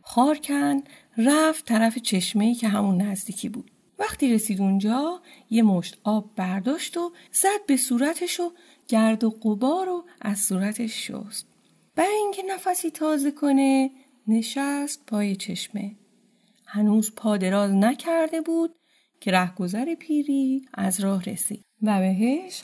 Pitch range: 205-285 Hz